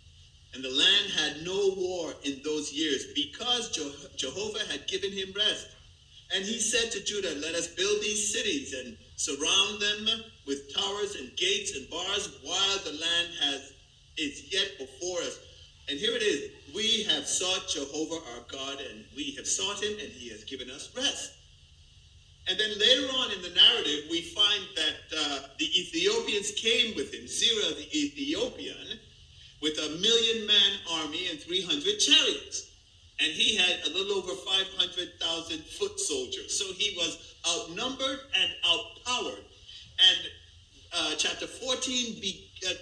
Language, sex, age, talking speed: English, male, 50-69, 155 wpm